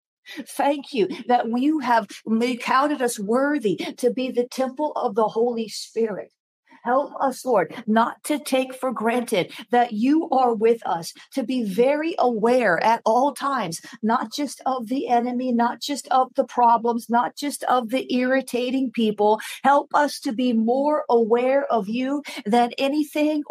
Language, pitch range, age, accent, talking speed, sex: English, 230-265 Hz, 50-69, American, 160 wpm, female